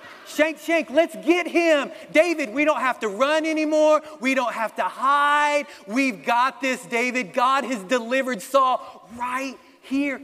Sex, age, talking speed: male, 40-59, 160 wpm